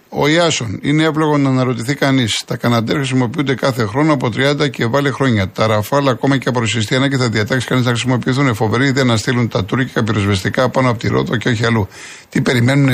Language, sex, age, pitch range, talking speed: Greek, male, 50-69, 105-140 Hz, 210 wpm